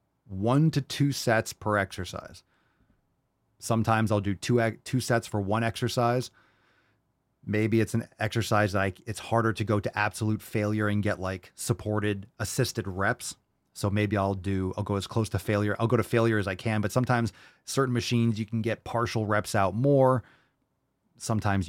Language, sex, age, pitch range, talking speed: English, male, 30-49, 100-115 Hz, 175 wpm